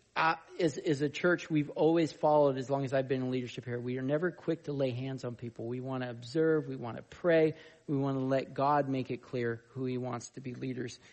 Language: English